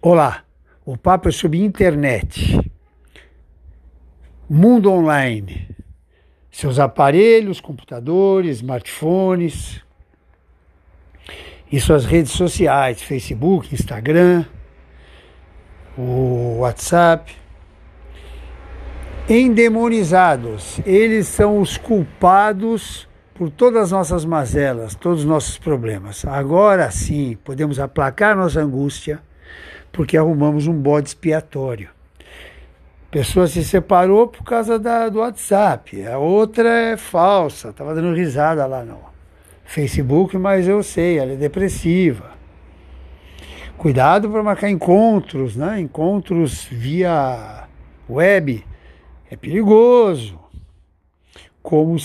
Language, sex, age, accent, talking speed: Portuguese, male, 60-79, Brazilian, 90 wpm